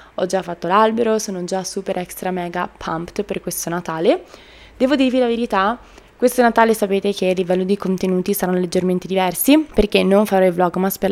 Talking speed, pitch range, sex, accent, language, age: 190 wpm, 175-210 Hz, female, native, Italian, 20-39